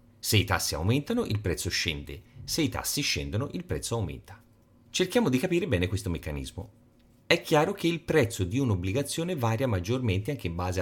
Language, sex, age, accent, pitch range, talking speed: Italian, male, 40-59, native, 95-135 Hz, 175 wpm